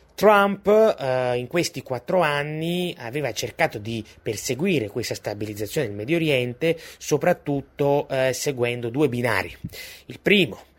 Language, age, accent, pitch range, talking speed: Italian, 30-49, native, 110-145 Hz, 120 wpm